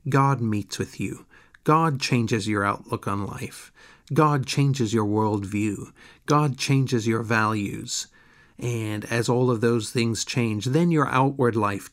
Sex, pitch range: male, 110-125 Hz